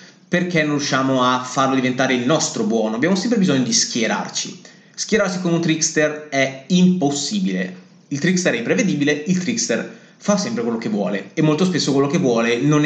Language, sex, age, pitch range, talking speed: Italian, male, 30-49, 125-190 Hz, 175 wpm